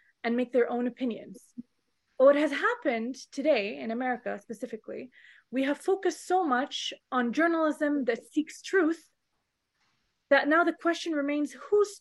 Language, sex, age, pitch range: English, female, 20-39, 230-310 Hz